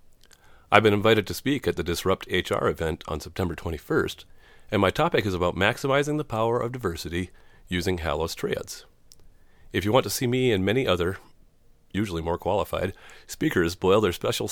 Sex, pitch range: male, 85-105 Hz